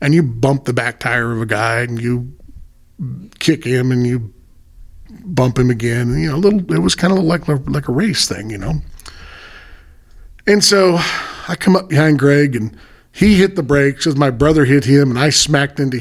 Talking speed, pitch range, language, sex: 205 wpm, 115-160 Hz, English, male